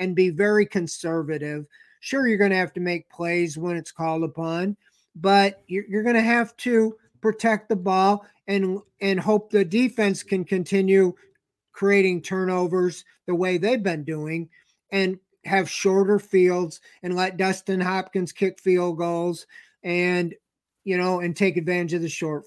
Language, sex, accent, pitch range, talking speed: English, male, American, 175-205 Hz, 160 wpm